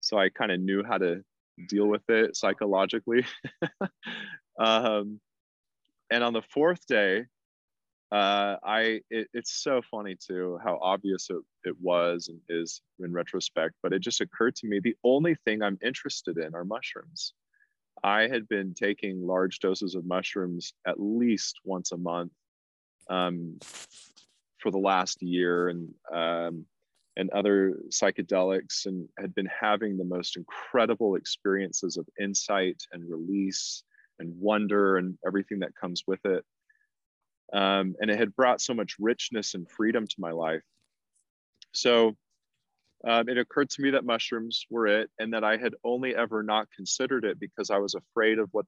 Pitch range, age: 90-110 Hz, 20-39